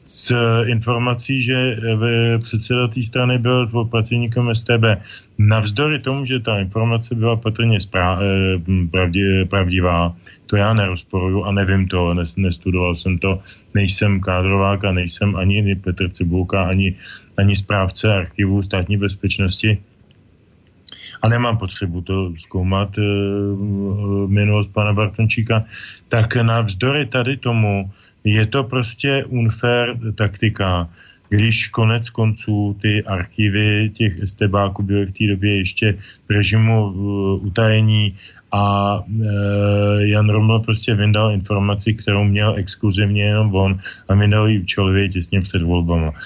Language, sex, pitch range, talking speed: Slovak, male, 95-115 Hz, 120 wpm